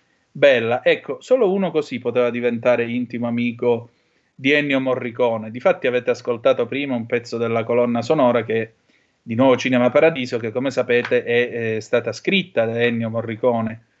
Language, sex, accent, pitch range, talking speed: Italian, male, native, 120-135 Hz, 155 wpm